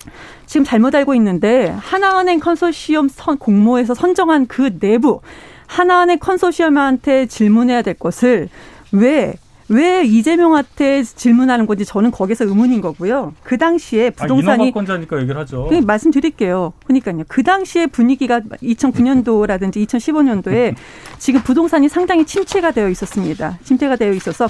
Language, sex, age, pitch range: Korean, female, 40-59, 215-305 Hz